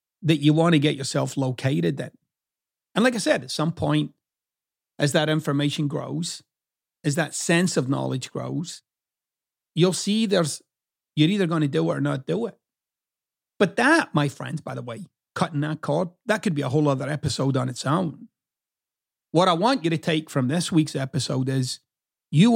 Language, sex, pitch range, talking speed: English, male, 145-185 Hz, 185 wpm